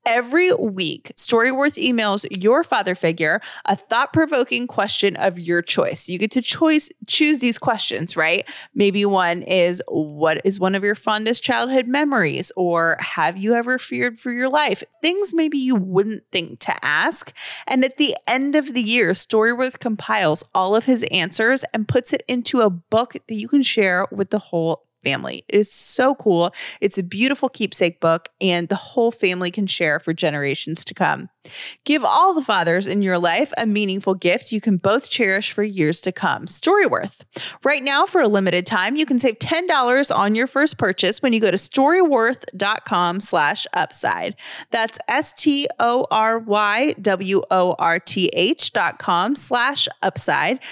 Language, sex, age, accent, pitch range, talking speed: English, female, 20-39, American, 185-265 Hz, 160 wpm